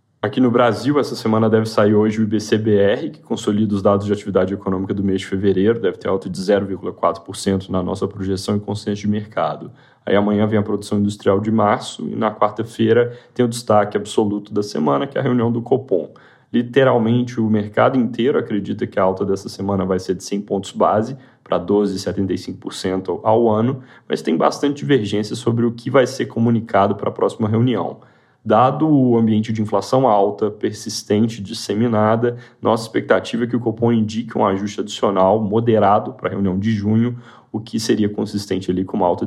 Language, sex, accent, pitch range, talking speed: Portuguese, male, Brazilian, 100-120 Hz, 185 wpm